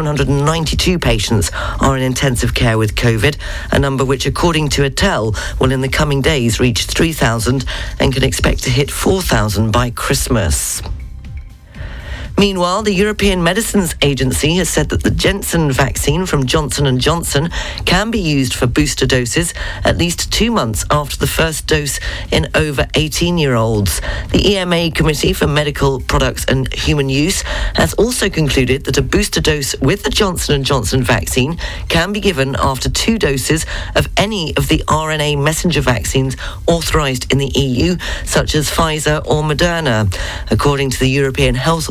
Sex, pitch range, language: female, 130-155 Hz, English